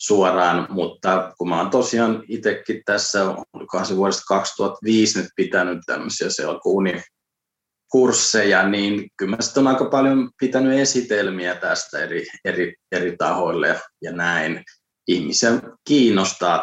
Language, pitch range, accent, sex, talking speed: Finnish, 95-115 Hz, native, male, 105 wpm